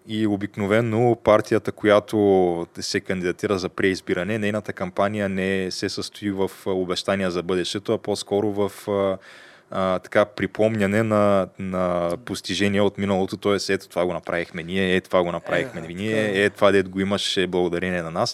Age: 20-39